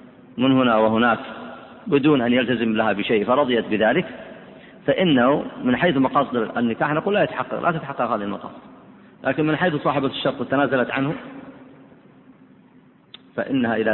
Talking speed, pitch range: 135 wpm, 110-140 Hz